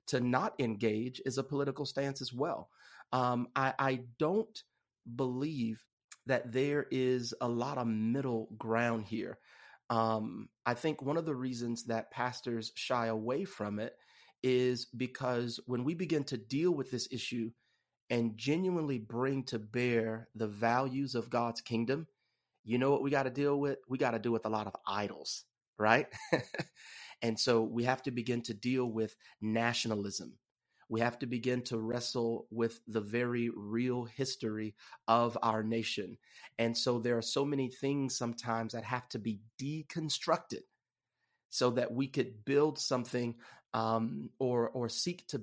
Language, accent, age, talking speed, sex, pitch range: English, American, 30-49, 160 wpm, male, 115-135 Hz